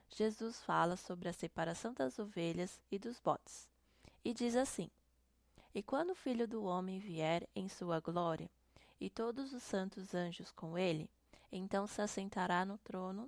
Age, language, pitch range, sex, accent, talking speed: 20-39, Portuguese, 175-220 Hz, female, Brazilian, 160 wpm